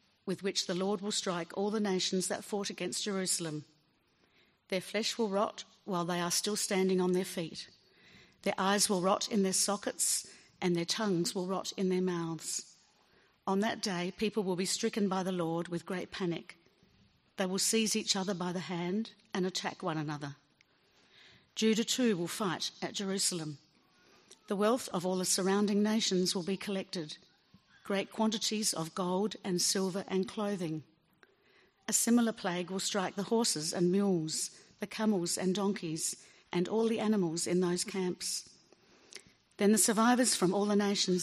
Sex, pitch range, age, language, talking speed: female, 180-210 Hz, 50-69, English, 170 wpm